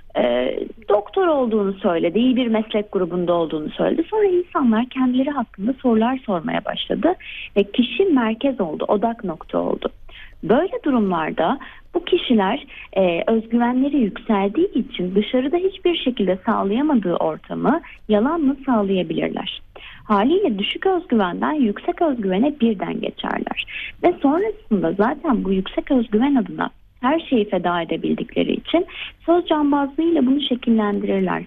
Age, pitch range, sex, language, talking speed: 30-49, 210-305 Hz, female, Turkish, 115 wpm